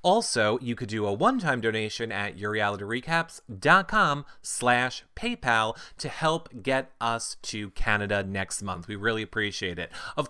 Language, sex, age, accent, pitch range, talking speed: English, male, 30-49, American, 110-155 Hz, 140 wpm